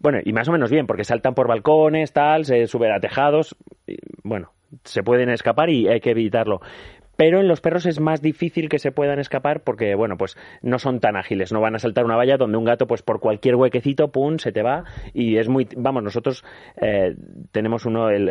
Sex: male